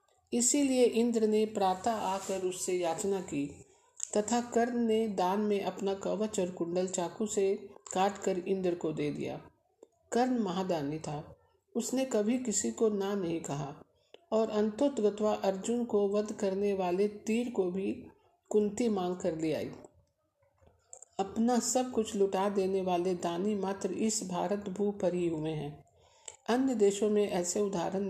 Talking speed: 145 wpm